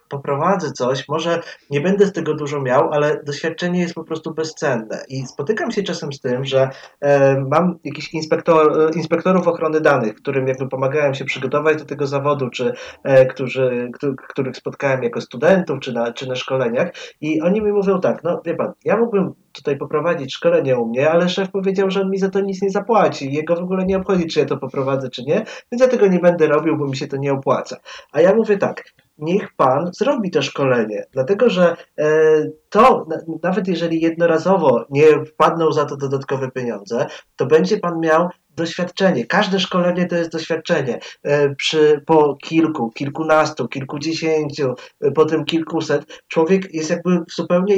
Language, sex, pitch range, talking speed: Polish, male, 145-175 Hz, 175 wpm